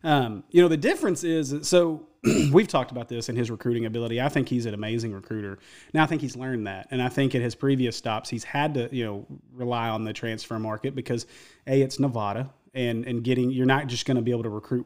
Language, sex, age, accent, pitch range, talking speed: English, male, 30-49, American, 115-145 Hz, 240 wpm